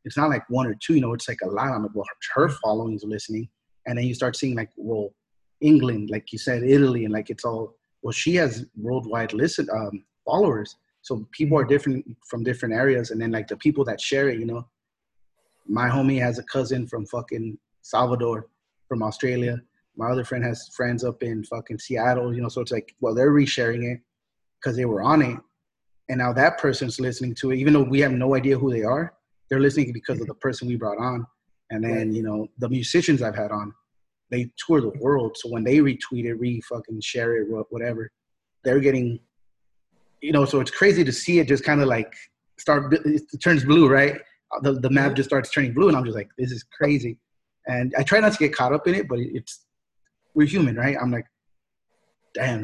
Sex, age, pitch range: male, 30-49, 115-140 Hz